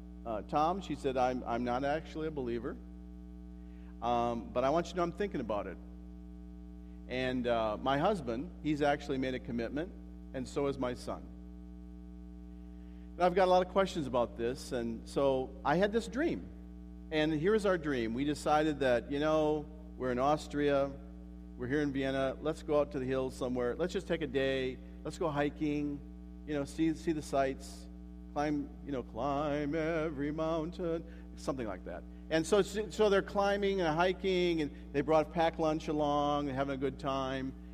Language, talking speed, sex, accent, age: English, 185 wpm, male, American, 50-69